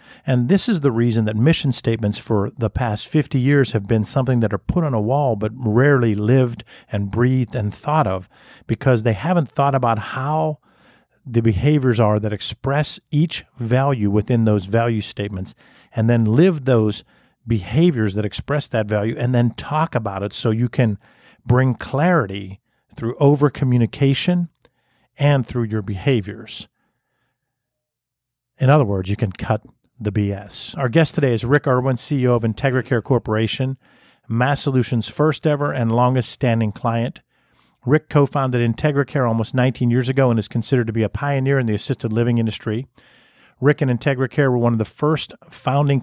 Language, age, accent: English, 50-69, American